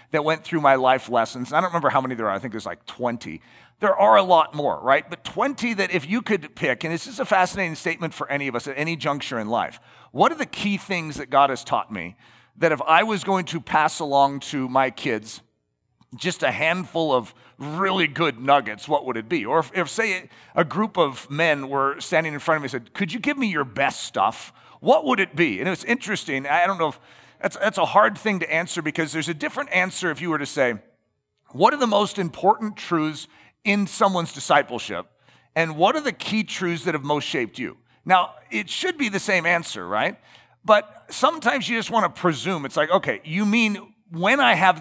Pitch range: 135-190 Hz